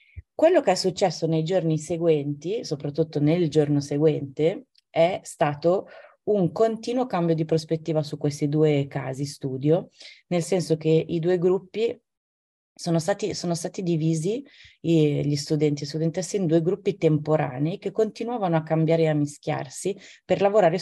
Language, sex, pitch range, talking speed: Italian, female, 150-170 Hz, 145 wpm